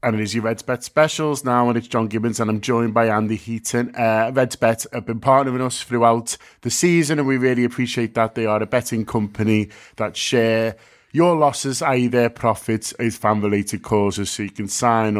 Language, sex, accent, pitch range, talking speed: English, male, British, 100-125 Hz, 210 wpm